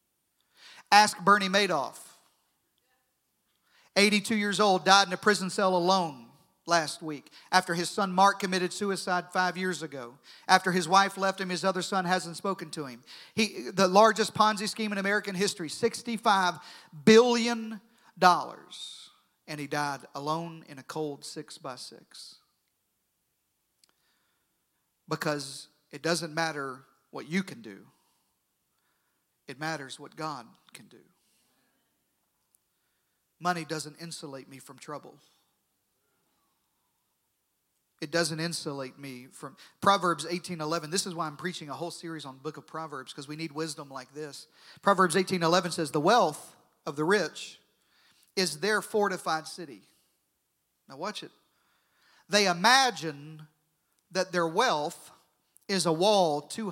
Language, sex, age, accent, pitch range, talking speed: English, male, 40-59, American, 155-195 Hz, 135 wpm